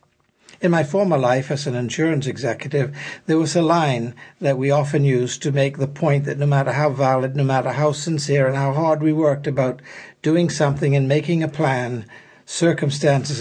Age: 60-79